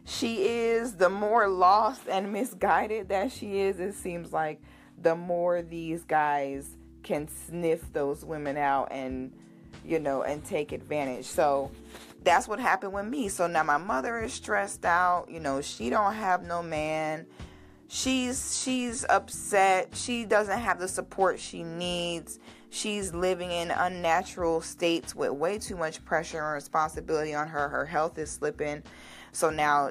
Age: 20-39